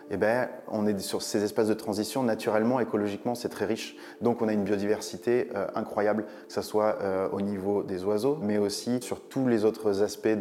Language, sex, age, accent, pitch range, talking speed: French, male, 20-39, French, 100-110 Hz, 210 wpm